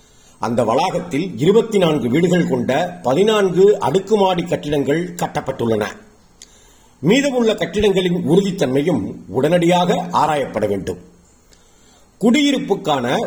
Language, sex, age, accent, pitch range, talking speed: Tamil, male, 50-69, native, 145-205 Hz, 75 wpm